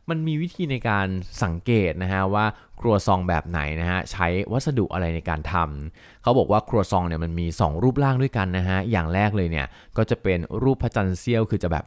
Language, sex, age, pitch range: Thai, male, 20-39, 85-110 Hz